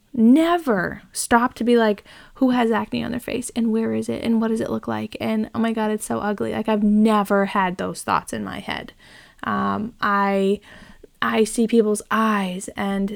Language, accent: English, American